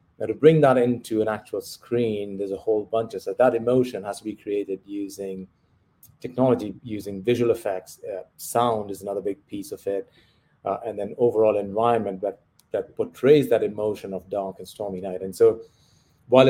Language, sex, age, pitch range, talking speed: English, male, 30-49, 100-130 Hz, 180 wpm